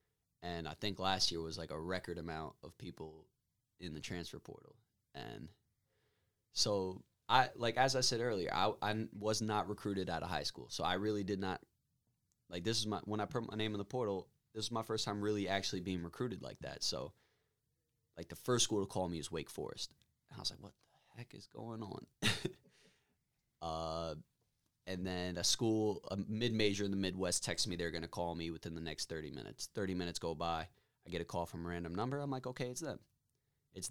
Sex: male